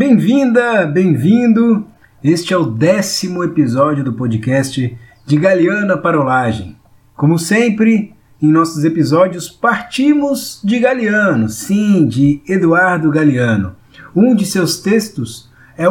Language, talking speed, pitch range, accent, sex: Portuguese, 110 wpm, 145-210 Hz, Brazilian, male